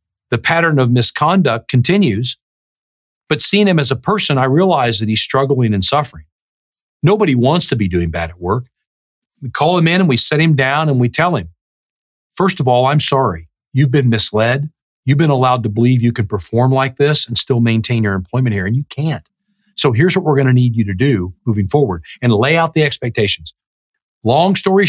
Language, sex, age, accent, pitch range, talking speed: English, male, 50-69, American, 110-150 Hz, 205 wpm